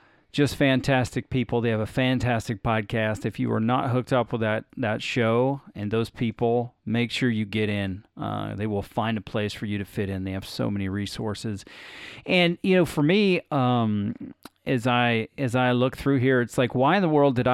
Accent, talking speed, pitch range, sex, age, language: American, 210 wpm, 110-130 Hz, male, 40-59, English